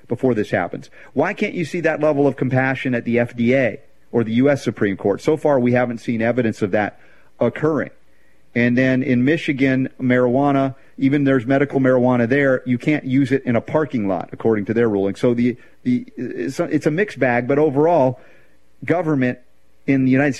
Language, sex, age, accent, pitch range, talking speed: English, male, 40-59, American, 120-150 Hz, 190 wpm